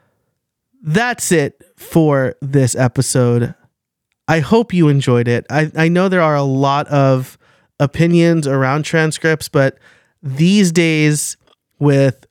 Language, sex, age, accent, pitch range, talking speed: English, male, 30-49, American, 130-175 Hz, 120 wpm